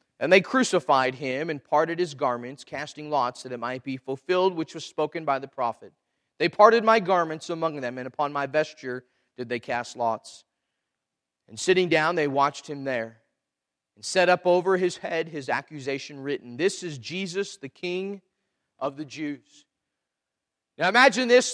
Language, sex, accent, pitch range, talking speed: English, male, American, 145-215 Hz, 175 wpm